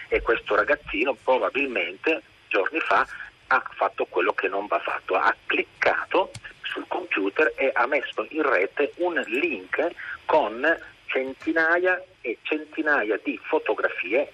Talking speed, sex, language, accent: 125 wpm, male, Italian, native